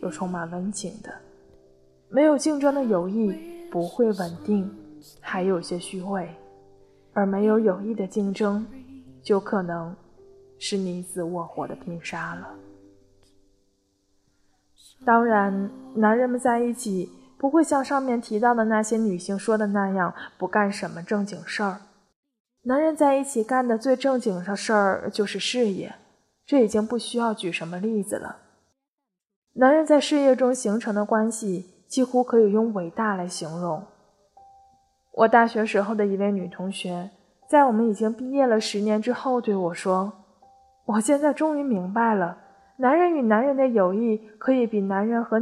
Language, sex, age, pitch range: Chinese, female, 20-39, 185-250 Hz